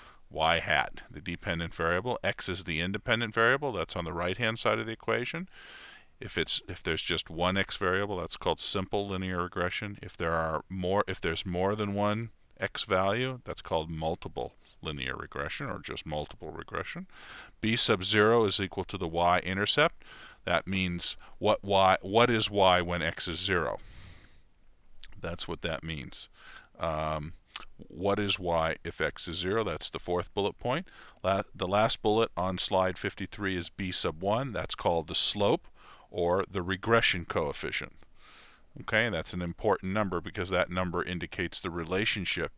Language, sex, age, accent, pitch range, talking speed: English, male, 50-69, American, 85-105 Hz, 165 wpm